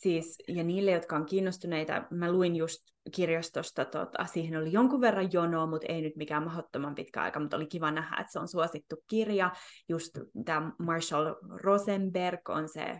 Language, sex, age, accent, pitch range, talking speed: Finnish, female, 20-39, native, 160-195 Hz, 175 wpm